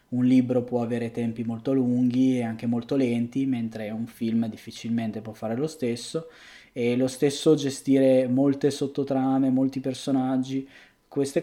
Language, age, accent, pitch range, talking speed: Italian, 20-39, native, 115-130 Hz, 145 wpm